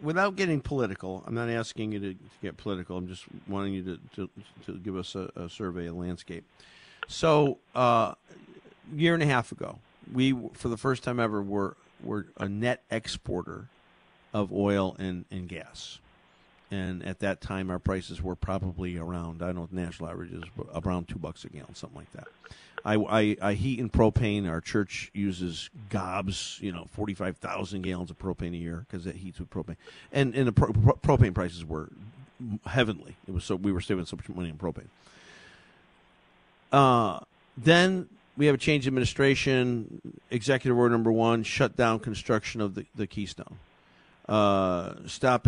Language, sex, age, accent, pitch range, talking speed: English, male, 50-69, American, 90-125 Hz, 185 wpm